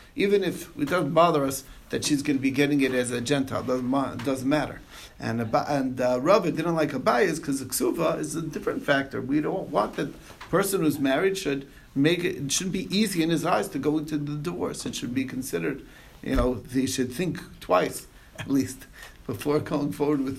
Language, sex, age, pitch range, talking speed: English, male, 60-79, 130-160 Hz, 225 wpm